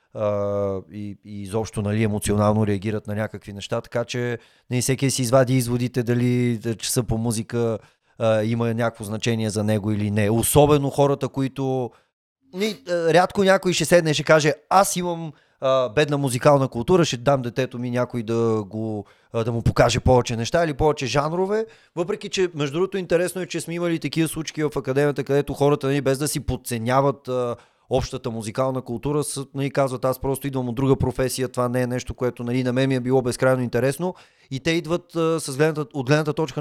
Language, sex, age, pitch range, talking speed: Bulgarian, male, 30-49, 120-155 Hz, 190 wpm